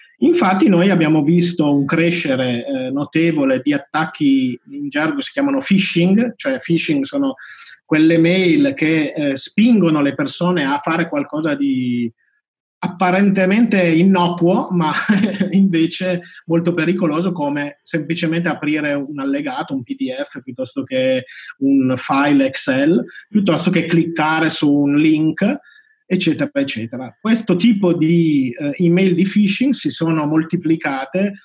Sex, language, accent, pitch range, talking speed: male, Italian, native, 145-195 Hz, 125 wpm